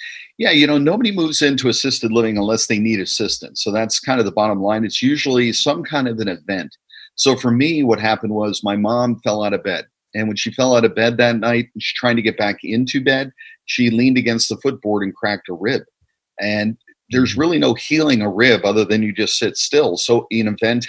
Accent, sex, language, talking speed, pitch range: American, male, English, 225 wpm, 110-135 Hz